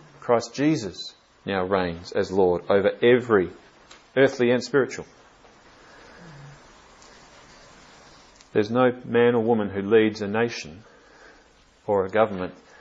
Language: English